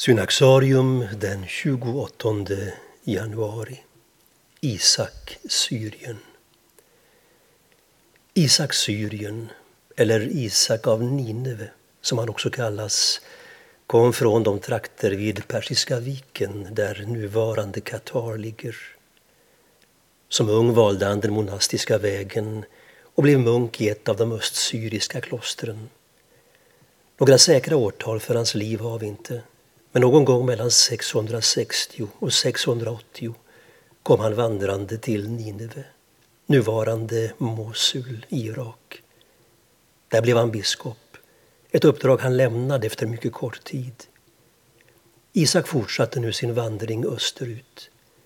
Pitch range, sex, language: 110-125 Hz, male, Swedish